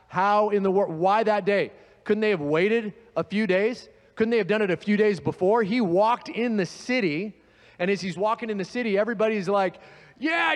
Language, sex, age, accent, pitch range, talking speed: English, male, 30-49, American, 180-220 Hz, 215 wpm